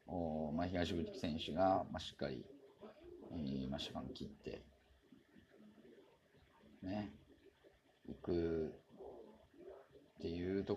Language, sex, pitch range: Japanese, male, 95-115 Hz